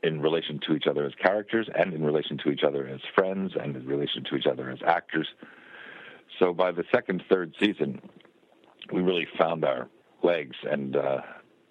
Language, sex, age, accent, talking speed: English, male, 60-79, American, 185 wpm